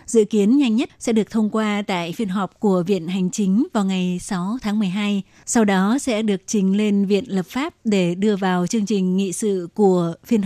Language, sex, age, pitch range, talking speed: Vietnamese, female, 20-39, 190-225 Hz, 220 wpm